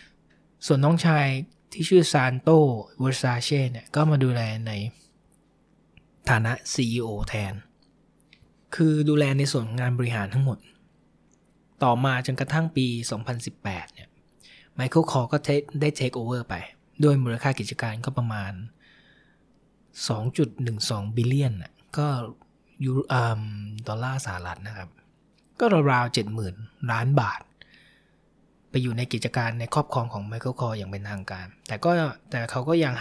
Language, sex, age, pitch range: Thai, male, 20-39, 115-145 Hz